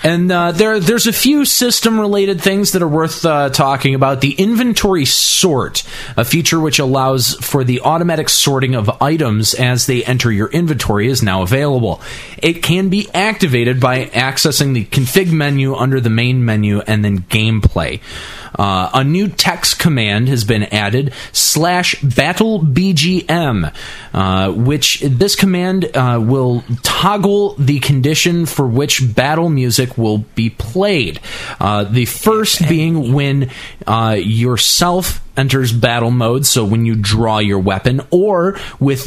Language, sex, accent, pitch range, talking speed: English, male, American, 110-160 Hz, 145 wpm